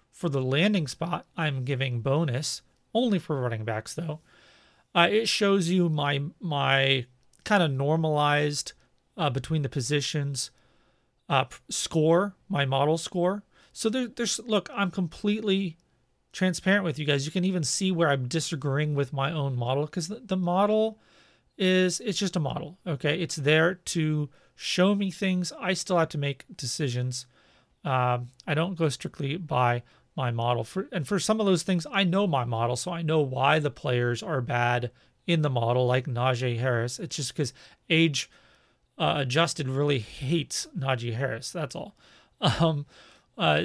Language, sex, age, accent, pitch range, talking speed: English, male, 40-59, American, 135-175 Hz, 165 wpm